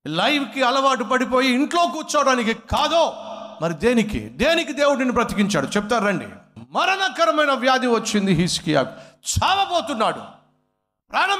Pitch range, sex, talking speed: 175-280 Hz, male, 100 wpm